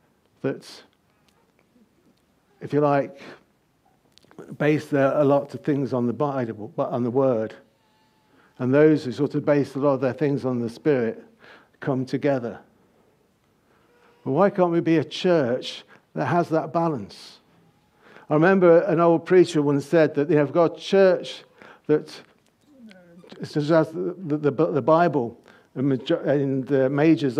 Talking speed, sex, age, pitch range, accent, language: 155 wpm, male, 60-79, 130-160 Hz, British, English